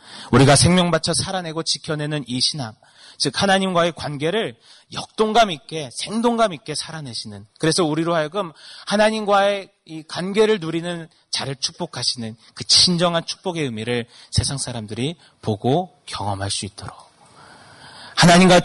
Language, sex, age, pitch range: Korean, male, 30-49, 120-180 Hz